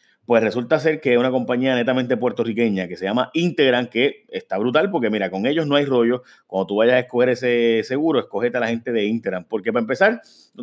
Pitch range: 105-130 Hz